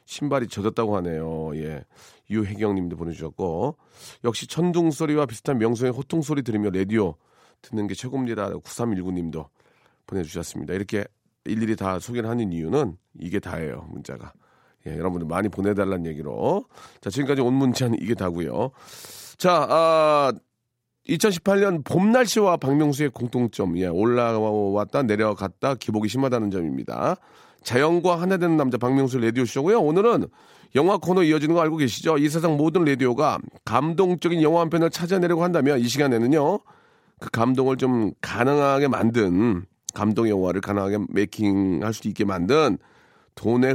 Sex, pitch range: male, 105-160 Hz